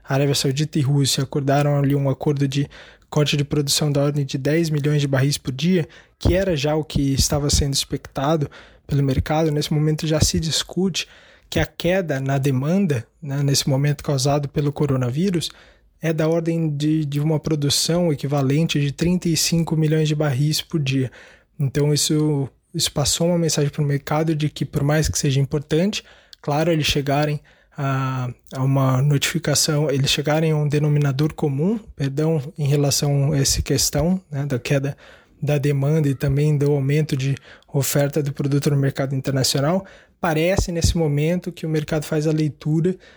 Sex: male